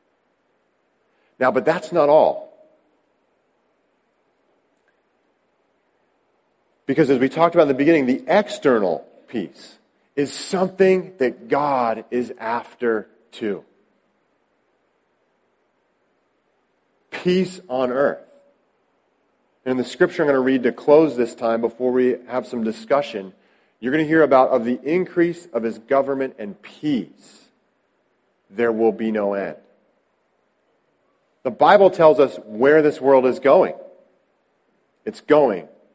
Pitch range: 120-155 Hz